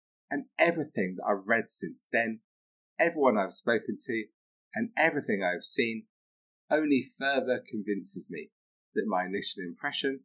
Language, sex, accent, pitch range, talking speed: English, male, British, 110-170 Hz, 135 wpm